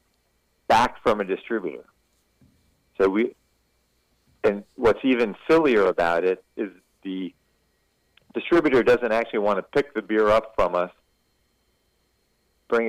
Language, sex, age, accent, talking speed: English, male, 50-69, American, 120 wpm